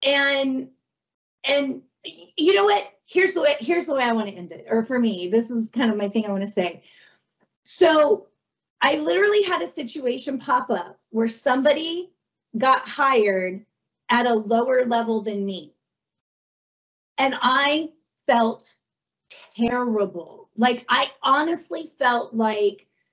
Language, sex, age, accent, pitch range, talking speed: English, female, 40-59, American, 230-330 Hz, 145 wpm